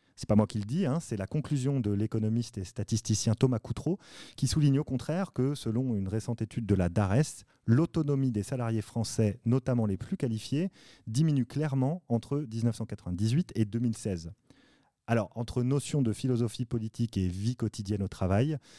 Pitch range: 110-140 Hz